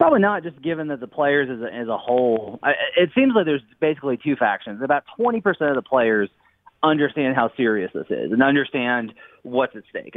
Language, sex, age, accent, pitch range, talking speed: English, male, 30-49, American, 120-155 Hz, 195 wpm